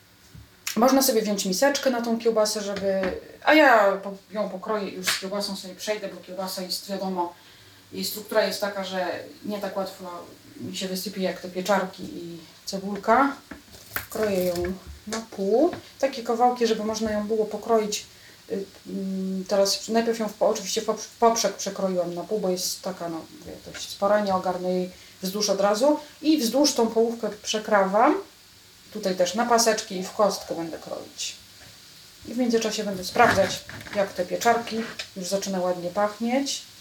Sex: female